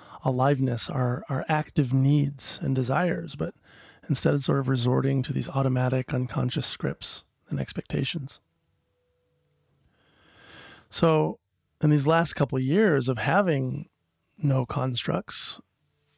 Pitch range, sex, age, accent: 130-160 Hz, male, 30-49, American